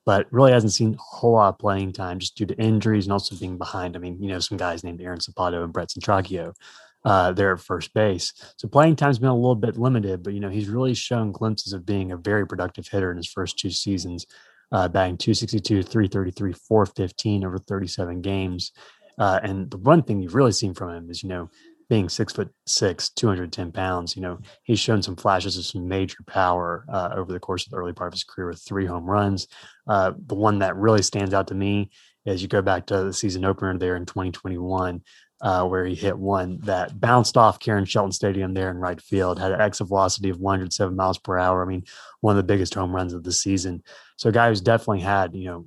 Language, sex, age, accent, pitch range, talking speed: English, male, 20-39, American, 90-105 Hz, 230 wpm